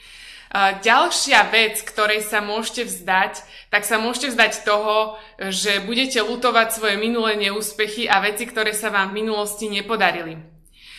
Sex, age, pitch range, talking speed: female, 20-39, 195-220 Hz, 135 wpm